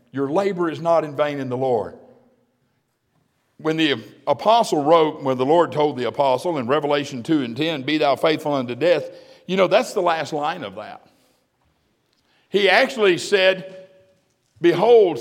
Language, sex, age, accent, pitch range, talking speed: English, male, 50-69, American, 150-210 Hz, 160 wpm